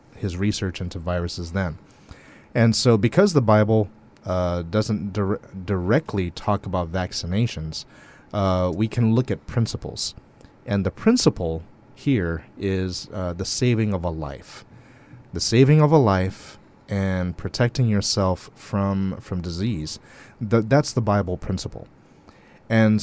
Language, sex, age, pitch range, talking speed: English, male, 30-49, 90-120 Hz, 135 wpm